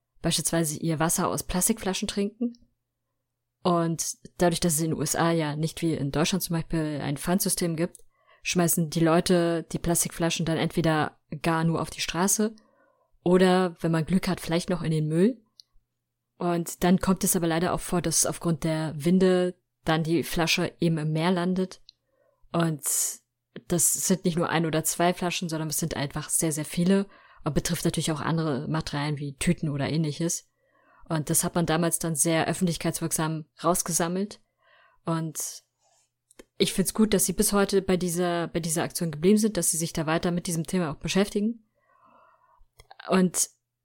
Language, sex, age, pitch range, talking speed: German, female, 20-39, 160-185 Hz, 170 wpm